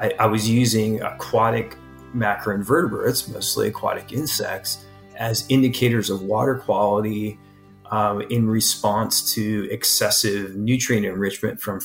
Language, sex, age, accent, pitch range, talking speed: English, male, 30-49, American, 105-115 Hz, 110 wpm